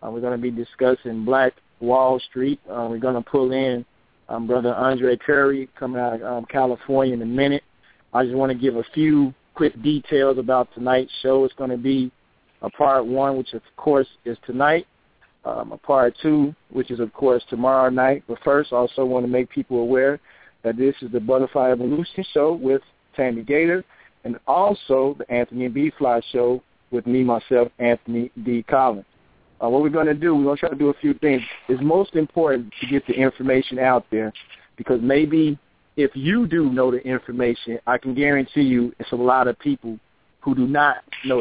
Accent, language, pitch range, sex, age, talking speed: American, English, 125-140 Hz, male, 50-69, 200 wpm